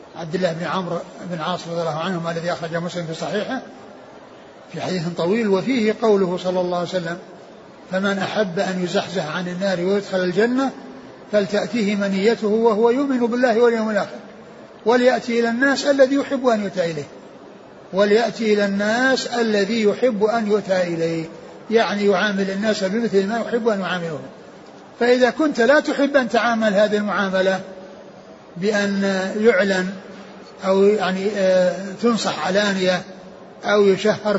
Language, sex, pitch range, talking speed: Arabic, male, 190-230 Hz, 135 wpm